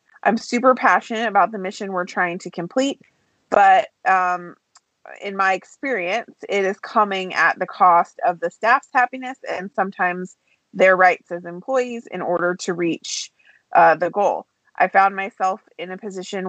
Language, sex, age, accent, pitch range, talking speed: English, female, 30-49, American, 175-210 Hz, 160 wpm